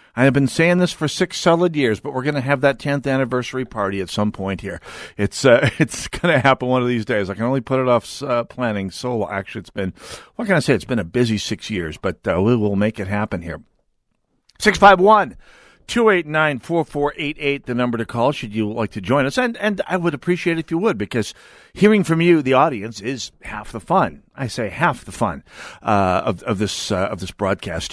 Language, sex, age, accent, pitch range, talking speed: English, male, 50-69, American, 115-170 Hz, 225 wpm